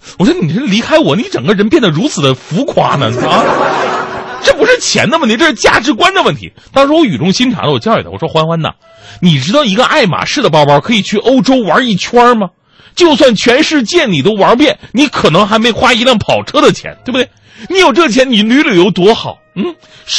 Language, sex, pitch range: Chinese, male, 150-245 Hz